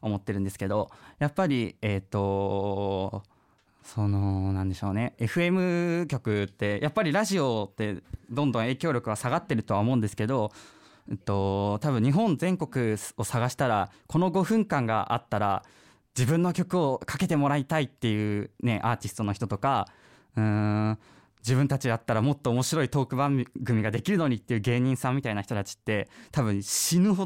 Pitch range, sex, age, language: 105-140 Hz, male, 20-39, Japanese